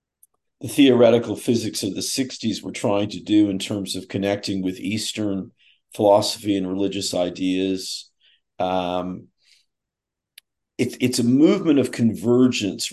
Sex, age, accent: male, 50-69, American